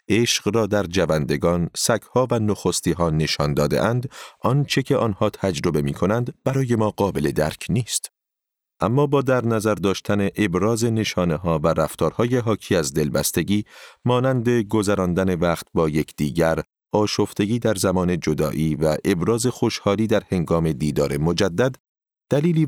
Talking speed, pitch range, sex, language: 130 wpm, 85-115 Hz, male, Persian